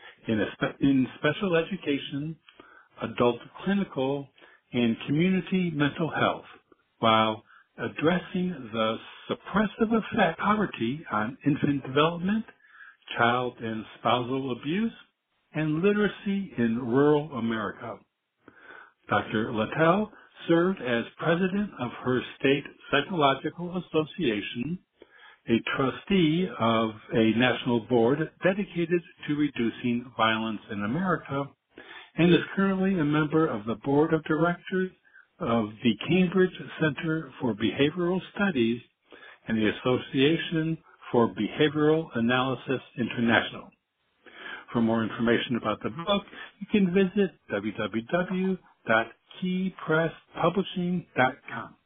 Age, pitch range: 60-79, 120-175 Hz